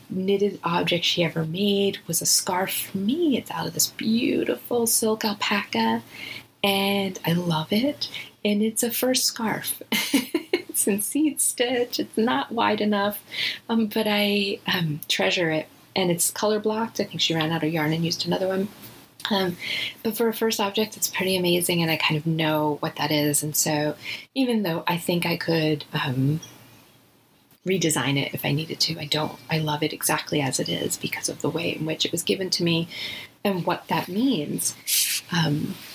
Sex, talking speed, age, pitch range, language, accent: female, 185 wpm, 30-49, 160-210 Hz, English, American